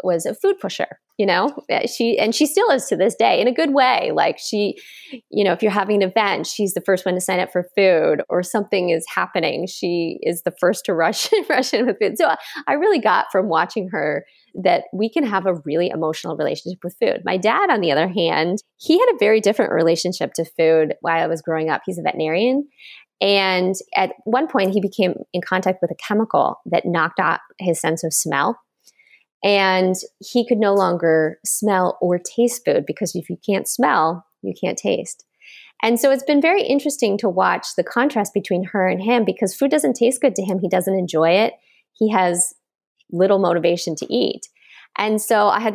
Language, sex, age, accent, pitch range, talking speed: English, female, 20-39, American, 175-235 Hz, 210 wpm